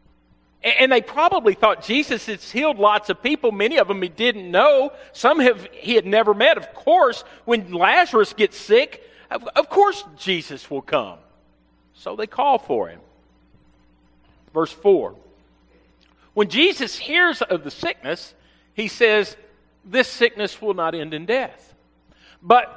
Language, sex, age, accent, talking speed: English, male, 50-69, American, 150 wpm